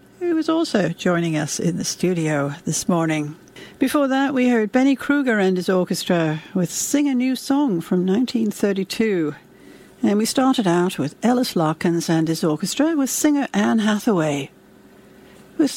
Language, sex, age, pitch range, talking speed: English, female, 60-79, 180-250 Hz, 155 wpm